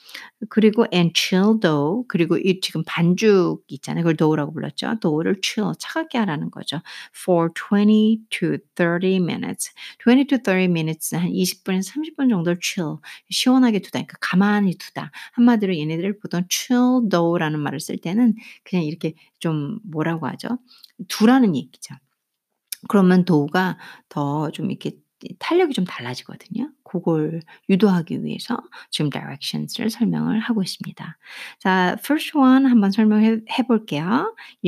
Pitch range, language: 170-230 Hz, Korean